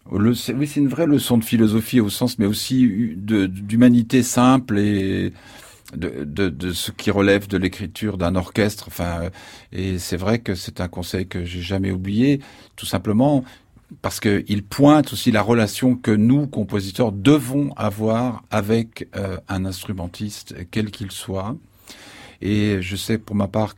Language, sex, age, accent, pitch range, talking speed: French, male, 50-69, French, 95-115 Hz, 155 wpm